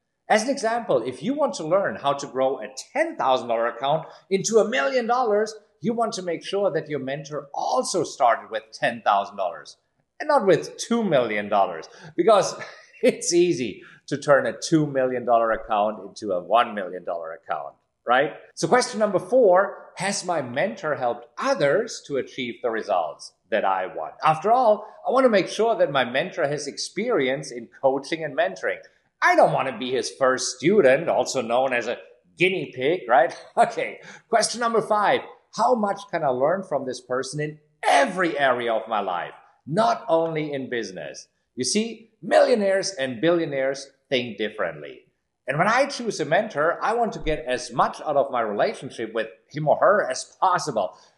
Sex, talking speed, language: male, 175 wpm, English